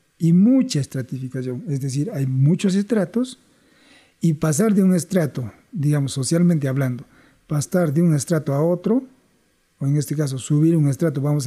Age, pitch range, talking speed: 50-69, 140-175 Hz, 155 wpm